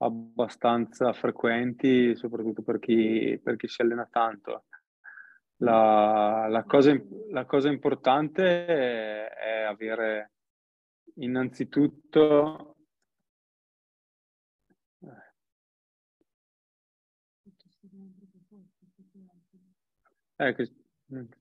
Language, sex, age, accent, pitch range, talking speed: Italian, male, 20-39, native, 115-140 Hz, 50 wpm